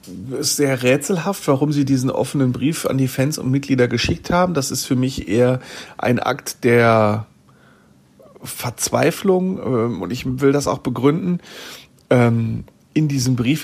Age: 40-59